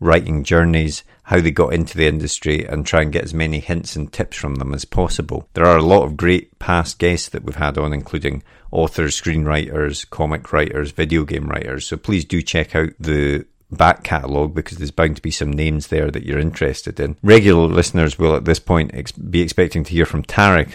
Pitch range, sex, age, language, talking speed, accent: 75-85 Hz, male, 40-59, English, 210 wpm, British